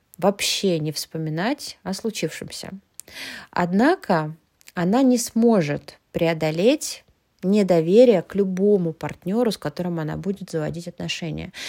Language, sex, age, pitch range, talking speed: English, female, 20-39, 165-210 Hz, 105 wpm